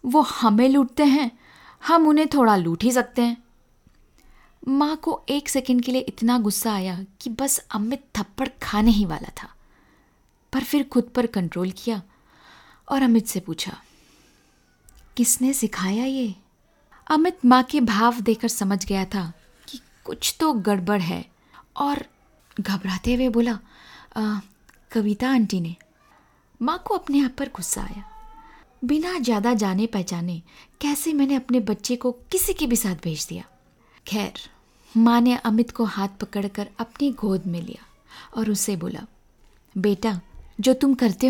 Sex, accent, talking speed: female, native, 145 wpm